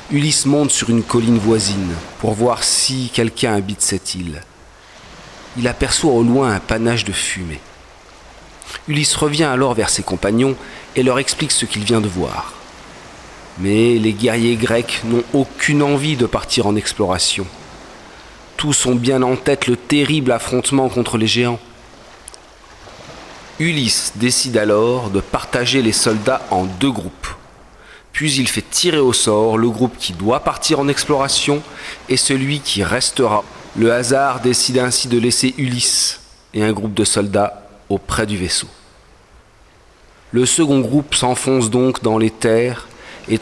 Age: 40-59